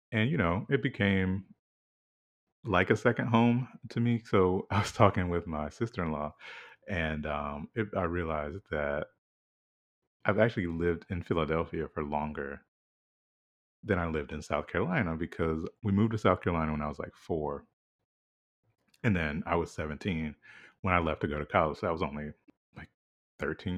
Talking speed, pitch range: 165 wpm, 75-100 Hz